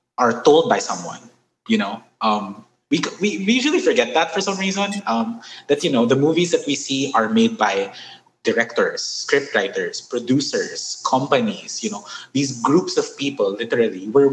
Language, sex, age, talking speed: English, male, 20-39, 170 wpm